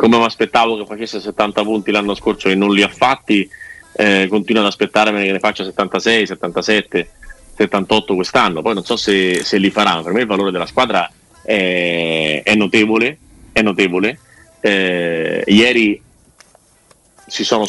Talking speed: 160 wpm